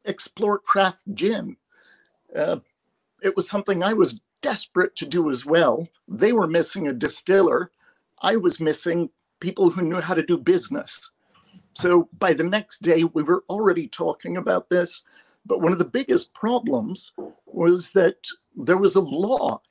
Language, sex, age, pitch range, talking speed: English, male, 50-69, 175-230 Hz, 160 wpm